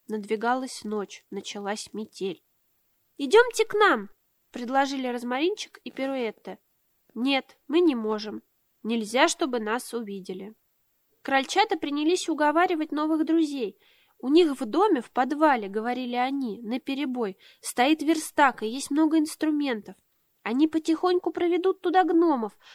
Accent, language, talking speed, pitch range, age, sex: native, Russian, 120 wpm, 235-330 Hz, 20-39, female